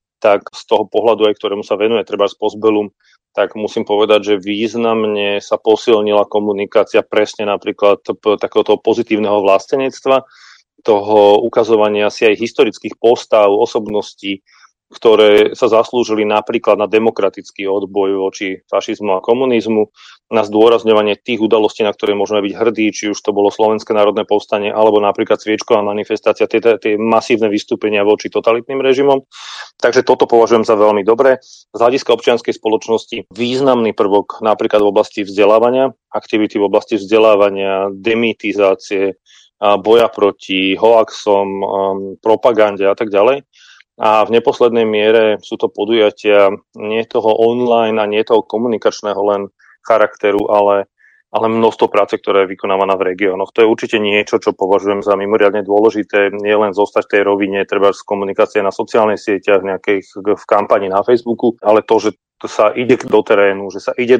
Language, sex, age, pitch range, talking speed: Slovak, male, 30-49, 100-115 Hz, 150 wpm